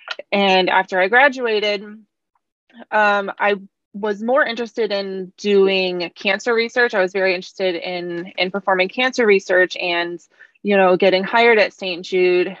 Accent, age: American, 20-39